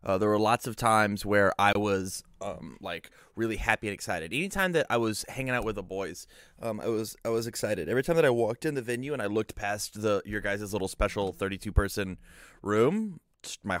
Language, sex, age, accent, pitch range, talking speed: English, male, 20-39, American, 105-140 Hz, 225 wpm